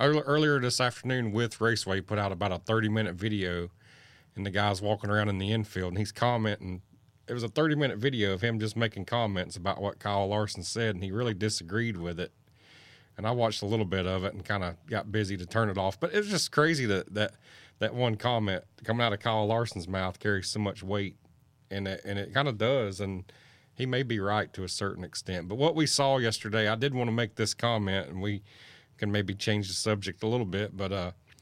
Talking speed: 230 wpm